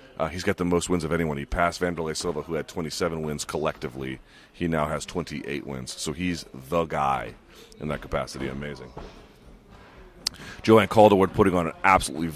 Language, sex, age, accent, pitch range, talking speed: English, male, 30-49, American, 80-95 Hz, 175 wpm